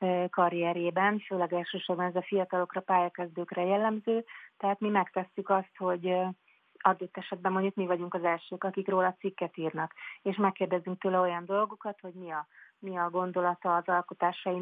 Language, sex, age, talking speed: Hungarian, female, 30-49, 150 wpm